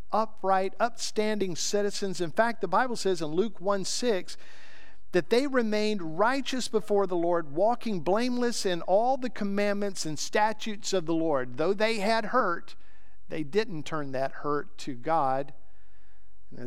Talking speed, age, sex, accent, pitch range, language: 150 wpm, 50-69, male, American, 145-215 Hz, English